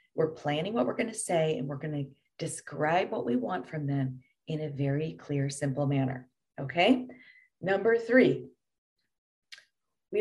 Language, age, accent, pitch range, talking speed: English, 40-59, American, 145-200 Hz, 160 wpm